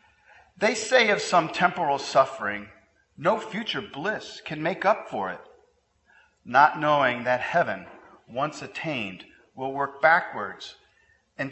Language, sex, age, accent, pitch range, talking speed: English, male, 40-59, American, 120-180 Hz, 125 wpm